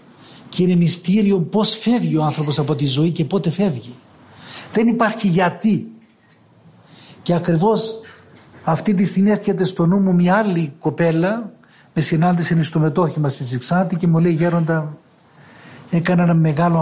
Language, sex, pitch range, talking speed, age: Greek, male, 160-195 Hz, 145 wpm, 60-79